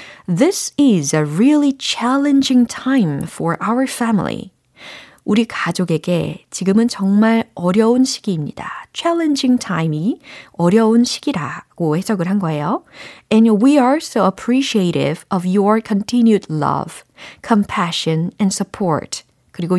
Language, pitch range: Korean, 175-250 Hz